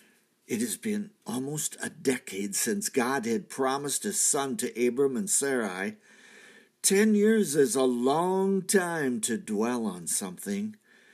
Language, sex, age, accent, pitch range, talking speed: English, male, 60-79, American, 130-210 Hz, 140 wpm